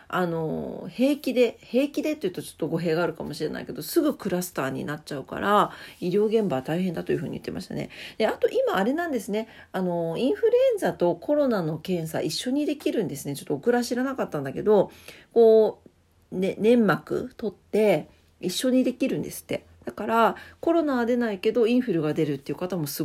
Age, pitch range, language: 40-59, 165-250 Hz, Japanese